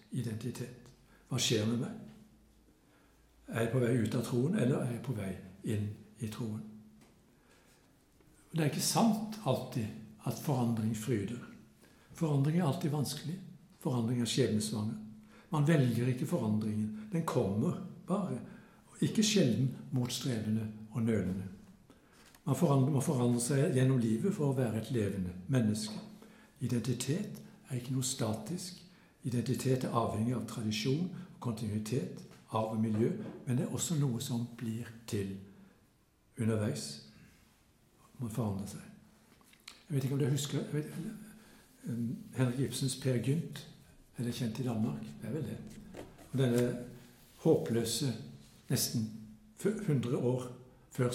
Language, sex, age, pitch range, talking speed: Danish, male, 60-79, 110-140 Hz, 130 wpm